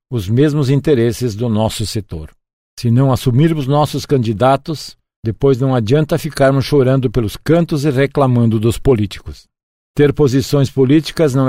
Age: 50-69